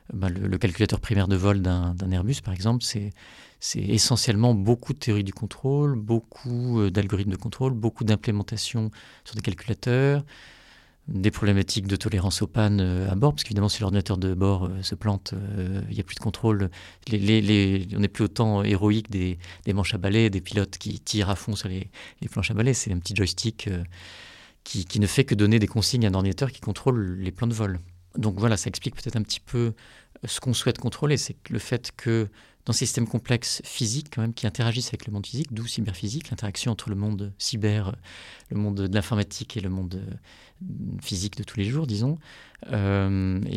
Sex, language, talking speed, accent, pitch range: male, French, 200 wpm, French, 100-115 Hz